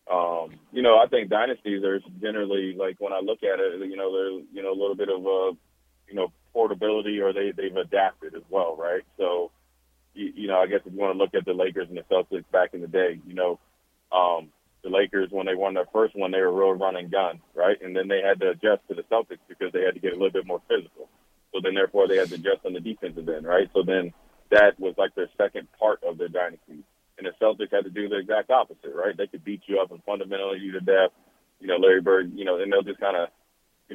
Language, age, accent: English, 30-49, American